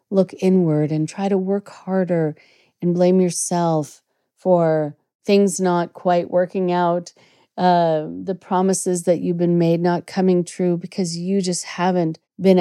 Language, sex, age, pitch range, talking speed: English, female, 40-59, 160-190 Hz, 150 wpm